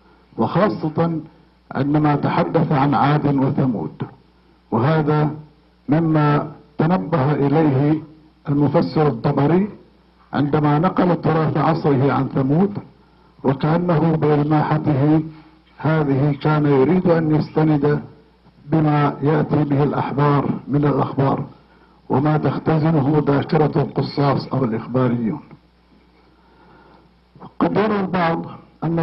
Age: 50-69